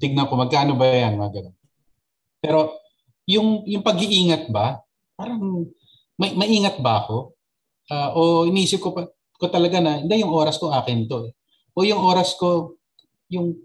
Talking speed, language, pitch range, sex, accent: 165 wpm, Filipino, 120-150 Hz, male, native